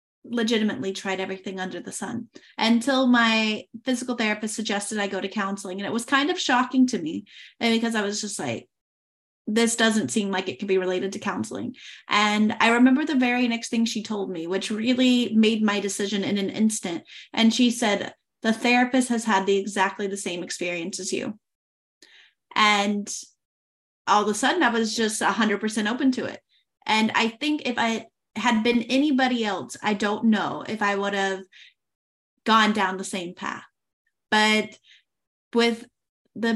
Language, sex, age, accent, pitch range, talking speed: English, female, 30-49, American, 200-240 Hz, 175 wpm